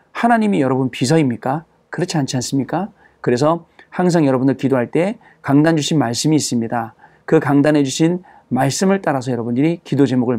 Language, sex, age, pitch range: Korean, male, 40-59, 130-160 Hz